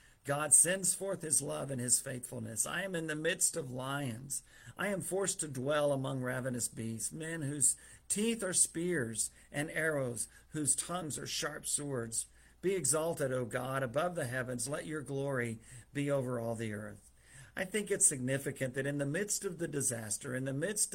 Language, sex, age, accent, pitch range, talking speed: English, male, 50-69, American, 120-155 Hz, 185 wpm